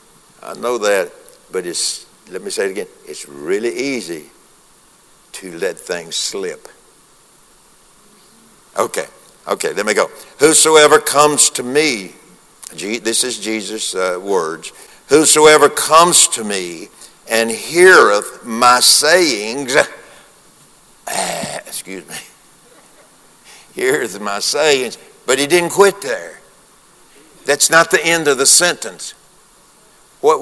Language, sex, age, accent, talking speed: English, male, 60-79, American, 115 wpm